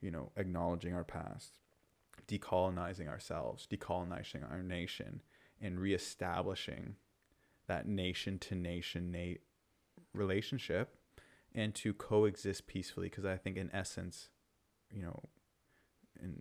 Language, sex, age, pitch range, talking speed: English, male, 20-39, 90-100 Hz, 105 wpm